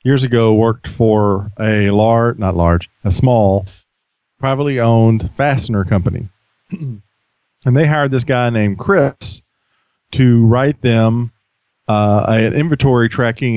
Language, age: English, 40-59